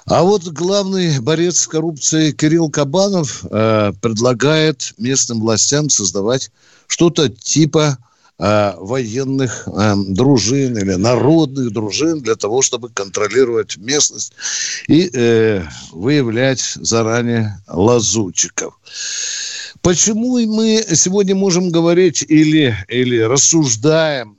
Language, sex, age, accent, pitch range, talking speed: Russian, male, 60-79, native, 115-170 Hz, 95 wpm